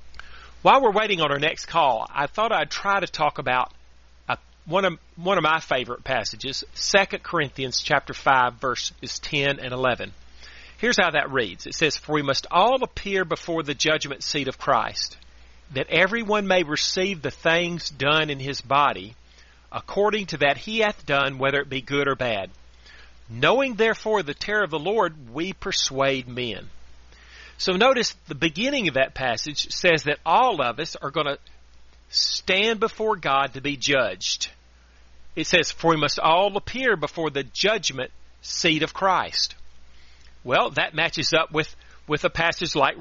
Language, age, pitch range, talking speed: English, 40-59, 125-175 Hz, 170 wpm